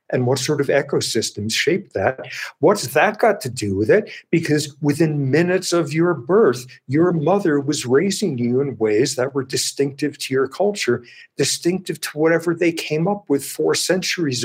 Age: 50-69